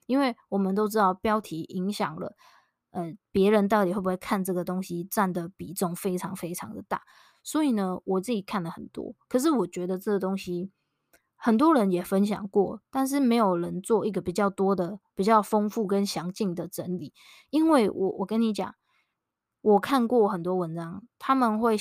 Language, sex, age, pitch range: Chinese, female, 20-39, 185-225 Hz